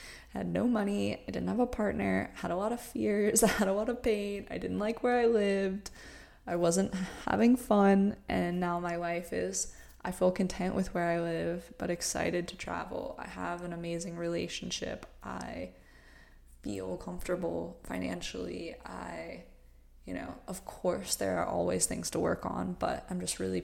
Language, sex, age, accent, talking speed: English, female, 20-39, American, 180 wpm